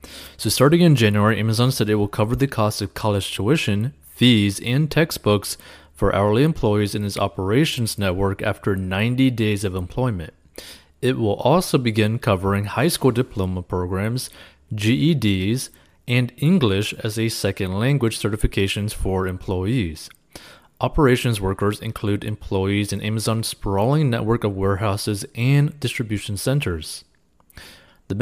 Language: English